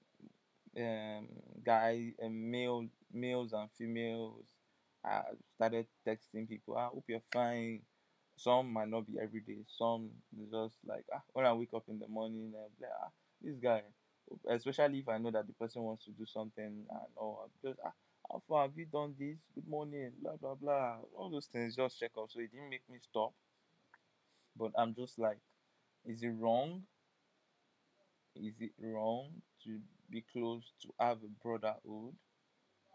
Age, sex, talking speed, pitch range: 20-39, male, 160 wpm, 110-125 Hz